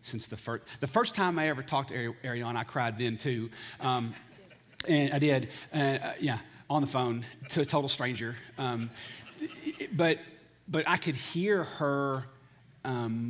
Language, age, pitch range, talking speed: English, 40-59, 115-135 Hz, 170 wpm